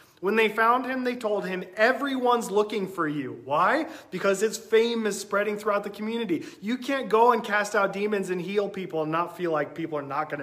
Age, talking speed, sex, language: 30-49, 220 wpm, male, English